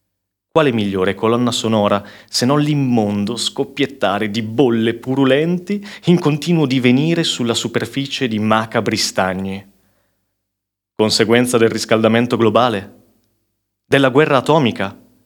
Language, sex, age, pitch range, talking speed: Italian, male, 30-49, 100-135 Hz, 100 wpm